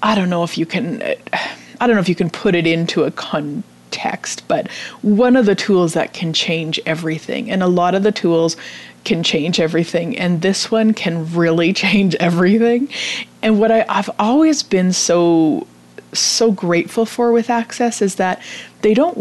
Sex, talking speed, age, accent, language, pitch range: female, 180 wpm, 30-49, American, English, 170-230 Hz